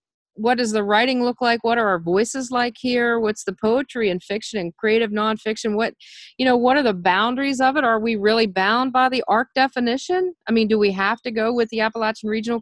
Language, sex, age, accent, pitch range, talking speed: English, female, 40-59, American, 200-240 Hz, 230 wpm